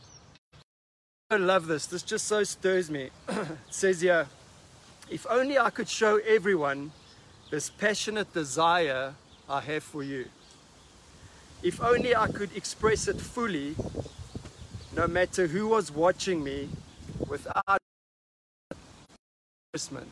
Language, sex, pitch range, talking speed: English, male, 150-200 Hz, 115 wpm